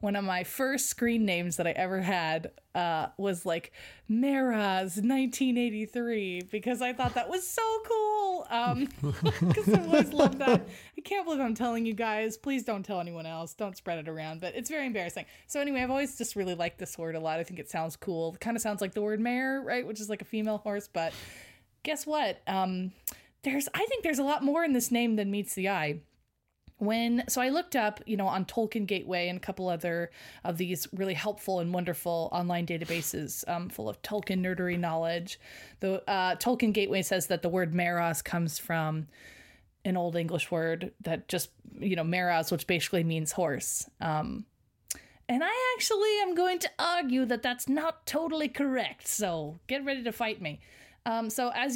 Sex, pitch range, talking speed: female, 175-245 Hz, 195 wpm